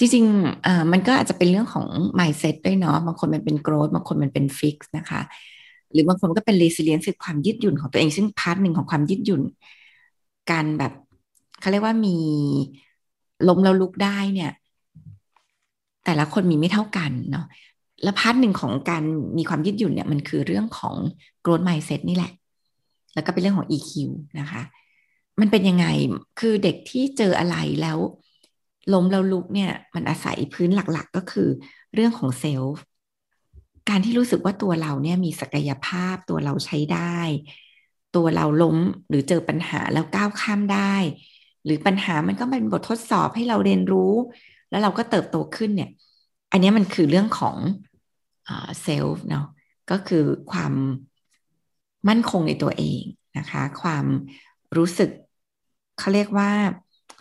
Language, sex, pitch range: Thai, female, 150-200 Hz